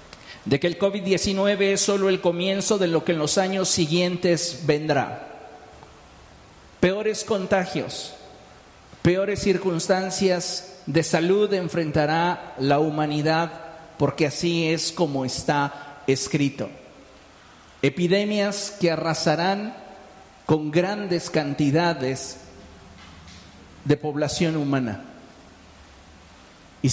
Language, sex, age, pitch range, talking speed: Spanish, male, 50-69, 150-190 Hz, 90 wpm